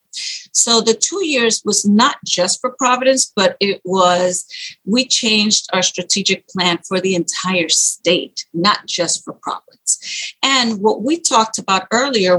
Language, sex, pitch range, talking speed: English, female, 180-245 Hz, 150 wpm